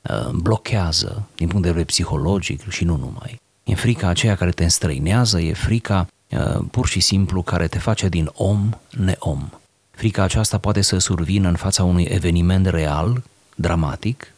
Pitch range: 90-115 Hz